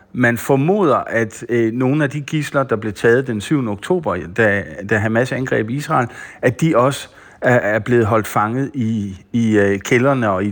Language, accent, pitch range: Danish, native, 105-135 Hz